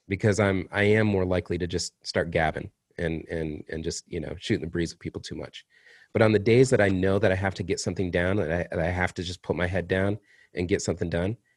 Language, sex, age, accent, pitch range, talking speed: English, male, 30-49, American, 90-110 Hz, 265 wpm